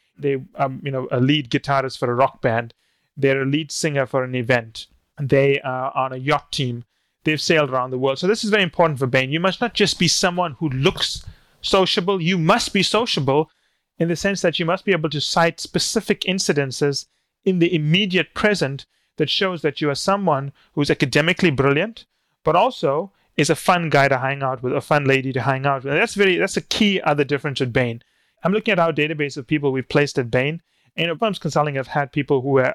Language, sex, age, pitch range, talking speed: English, male, 30-49, 135-180 Hz, 220 wpm